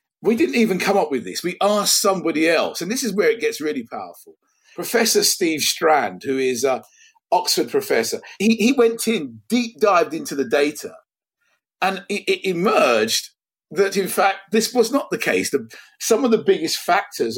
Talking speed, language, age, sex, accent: 185 wpm, English, 50-69, male, British